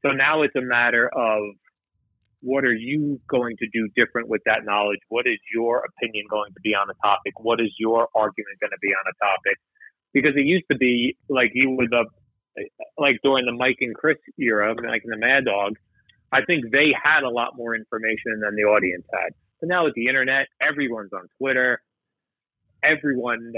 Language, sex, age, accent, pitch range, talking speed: English, male, 30-49, American, 110-130 Hz, 200 wpm